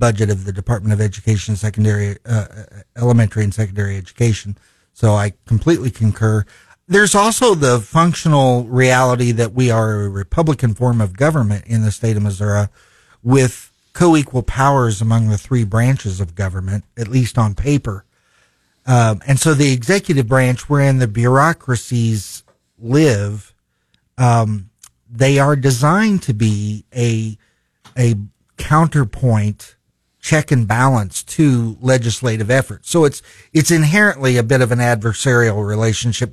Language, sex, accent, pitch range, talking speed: English, male, American, 110-140 Hz, 135 wpm